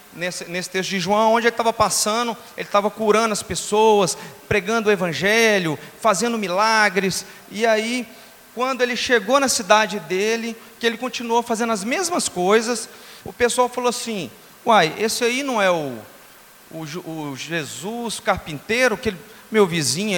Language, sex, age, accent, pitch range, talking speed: Portuguese, male, 40-59, Brazilian, 175-225 Hz, 155 wpm